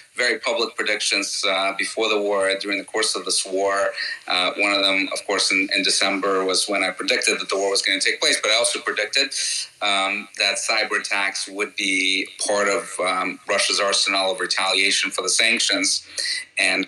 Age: 30-49